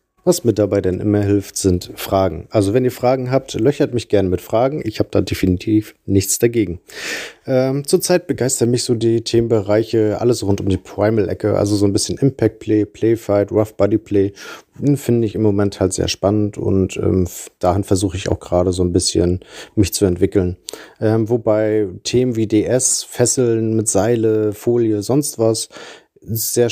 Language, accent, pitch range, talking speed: German, German, 100-120 Hz, 170 wpm